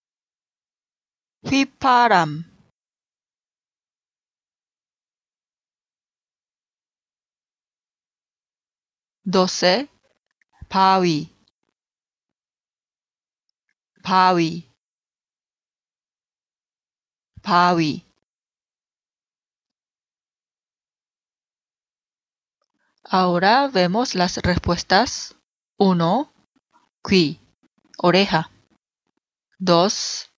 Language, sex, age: Korean, female, 40-59